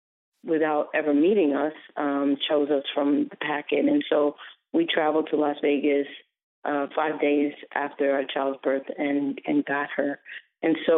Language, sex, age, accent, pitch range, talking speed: English, female, 40-59, American, 150-170 Hz, 165 wpm